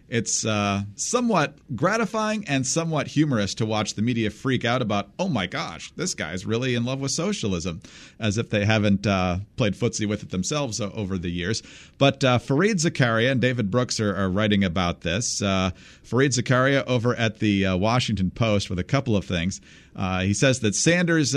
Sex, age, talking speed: male, 40-59, 190 wpm